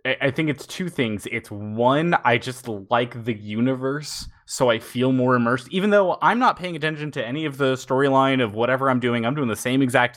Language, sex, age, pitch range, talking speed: English, male, 20-39, 105-130 Hz, 220 wpm